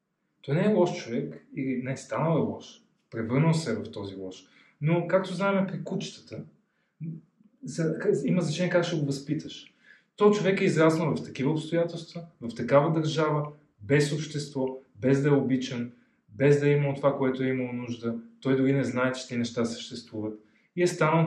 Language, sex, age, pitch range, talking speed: Bulgarian, male, 30-49, 115-155 Hz, 180 wpm